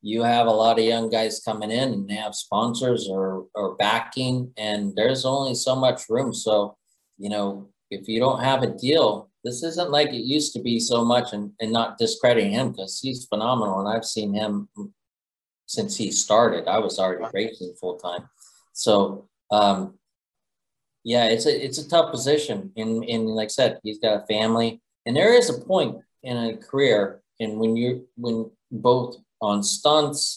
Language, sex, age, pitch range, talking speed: English, male, 40-59, 105-130 Hz, 185 wpm